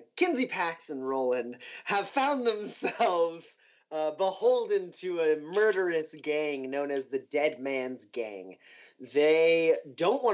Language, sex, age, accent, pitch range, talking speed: English, male, 30-49, American, 120-165 Hz, 130 wpm